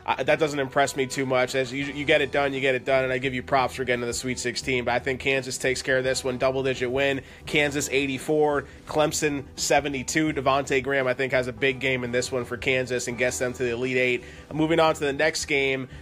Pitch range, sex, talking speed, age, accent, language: 130-155 Hz, male, 260 wpm, 20-39, American, English